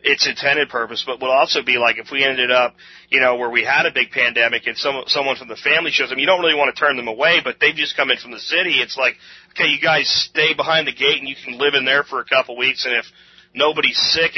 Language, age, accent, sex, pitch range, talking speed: English, 30-49, American, male, 125-155 Hz, 280 wpm